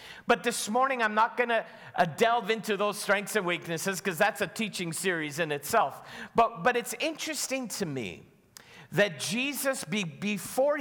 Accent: American